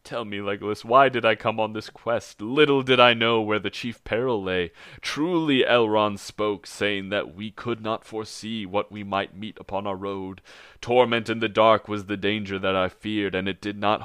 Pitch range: 90-110 Hz